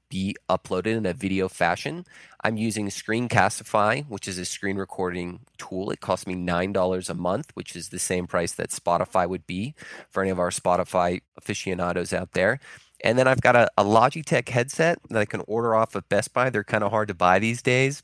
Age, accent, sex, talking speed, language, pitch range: 20-39, American, male, 205 wpm, English, 95-120 Hz